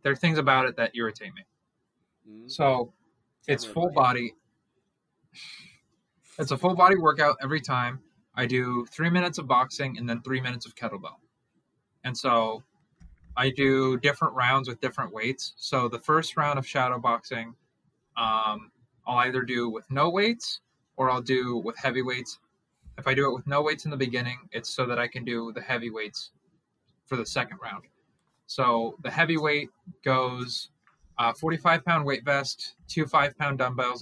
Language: English